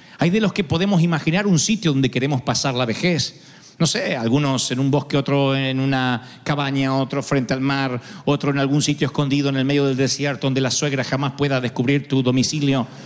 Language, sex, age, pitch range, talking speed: Spanish, male, 50-69, 140-205 Hz, 205 wpm